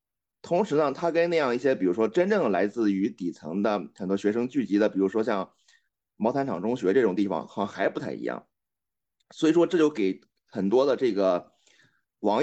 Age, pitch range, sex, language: 30-49, 105-160 Hz, male, Chinese